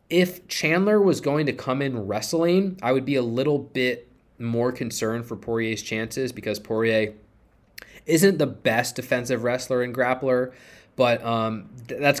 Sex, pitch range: male, 105-125 Hz